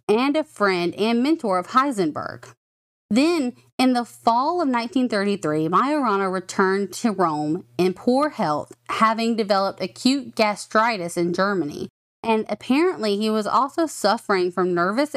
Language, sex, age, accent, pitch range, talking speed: English, female, 20-39, American, 185-260 Hz, 135 wpm